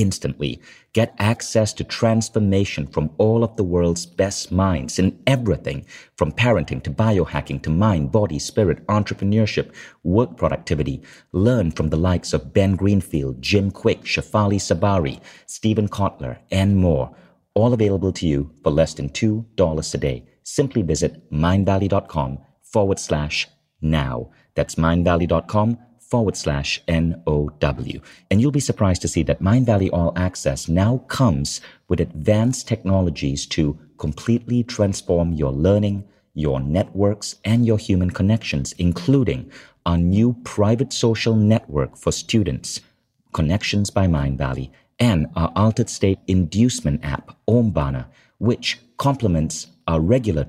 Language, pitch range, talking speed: English, 80-110 Hz, 130 wpm